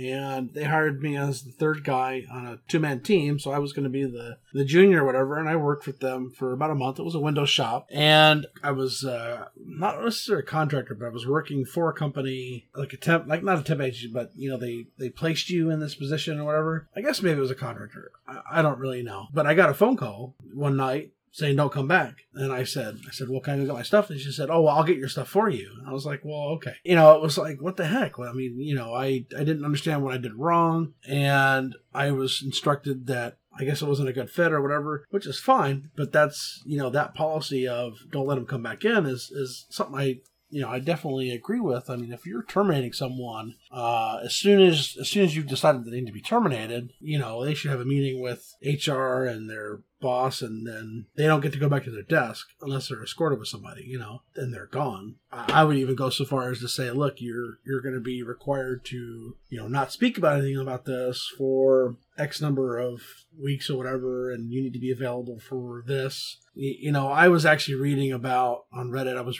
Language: English